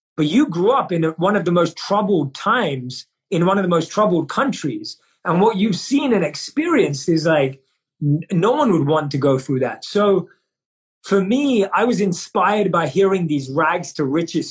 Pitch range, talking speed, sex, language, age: 155-195 Hz, 185 wpm, male, English, 30-49